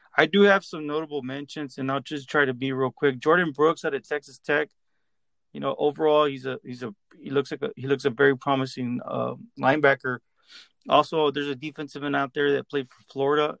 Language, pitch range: English, 130-150 Hz